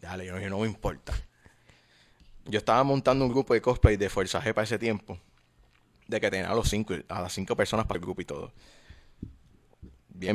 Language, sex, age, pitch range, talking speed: English, male, 20-39, 95-105 Hz, 205 wpm